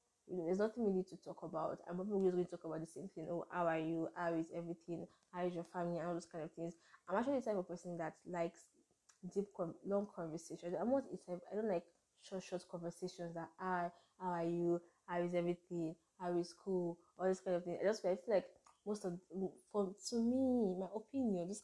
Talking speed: 235 wpm